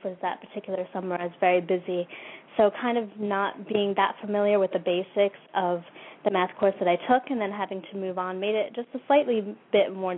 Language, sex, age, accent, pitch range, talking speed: English, female, 20-39, American, 180-205 Hz, 220 wpm